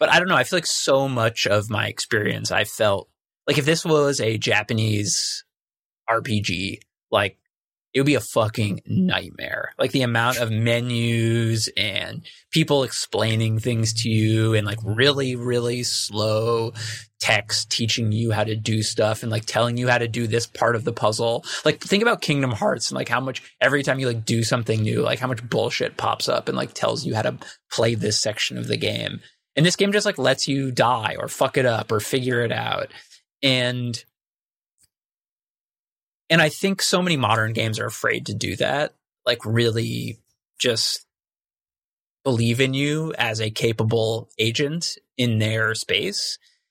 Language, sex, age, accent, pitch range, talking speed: English, male, 20-39, American, 110-130 Hz, 180 wpm